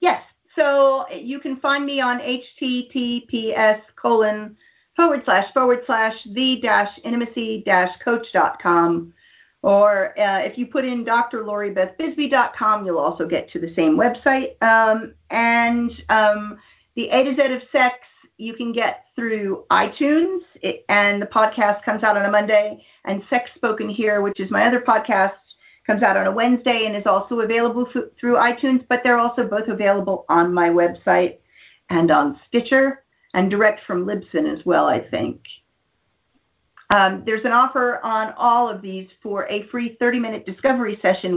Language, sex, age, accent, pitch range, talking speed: English, female, 50-69, American, 200-245 Hz, 165 wpm